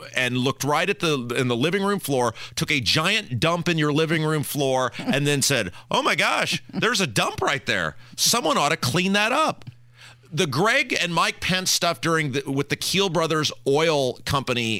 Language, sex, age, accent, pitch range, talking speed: English, male, 40-59, American, 125-185 Hz, 200 wpm